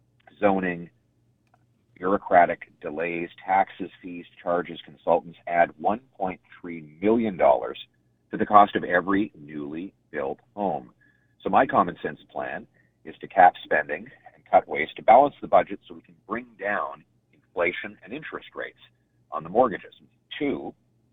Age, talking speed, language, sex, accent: 40-59, 135 wpm, English, male, American